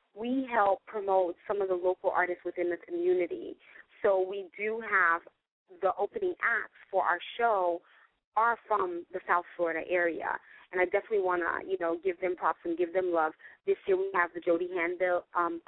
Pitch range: 180-255 Hz